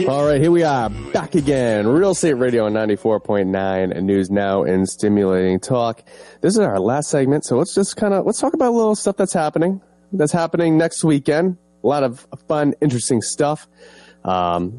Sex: male